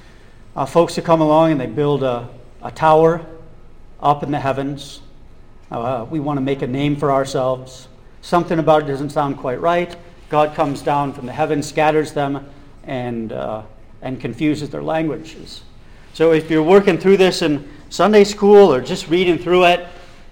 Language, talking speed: English, 175 wpm